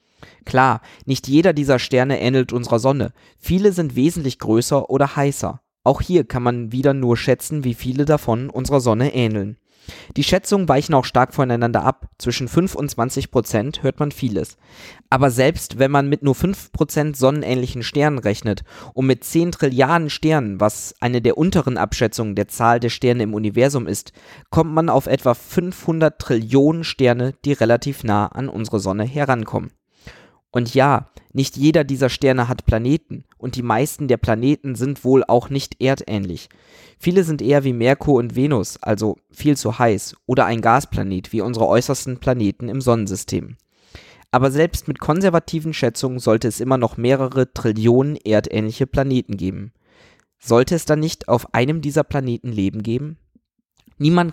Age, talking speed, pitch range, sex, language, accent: 20-39, 160 wpm, 115-140 Hz, male, German, German